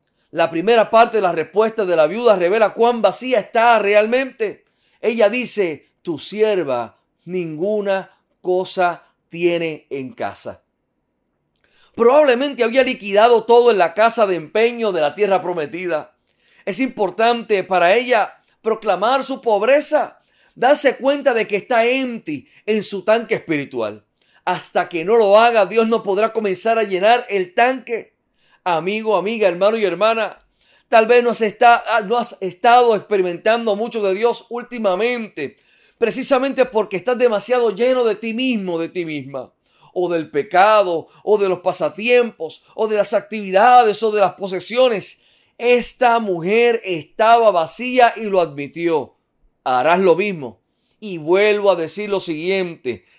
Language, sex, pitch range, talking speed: Spanish, male, 185-235 Hz, 140 wpm